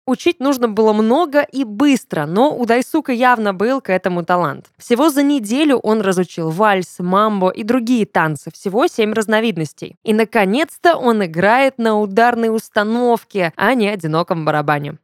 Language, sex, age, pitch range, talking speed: Russian, female, 20-39, 195-265 Hz, 150 wpm